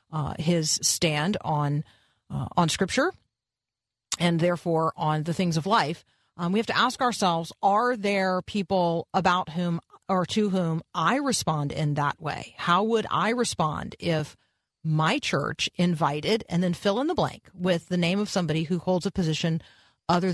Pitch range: 155-185 Hz